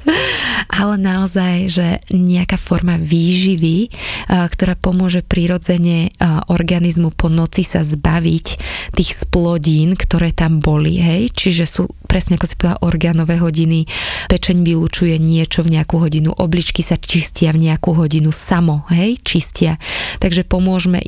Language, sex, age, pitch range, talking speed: Slovak, female, 20-39, 165-180 Hz, 130 wpm